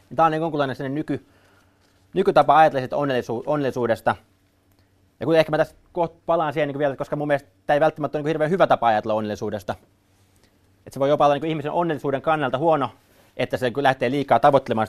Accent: native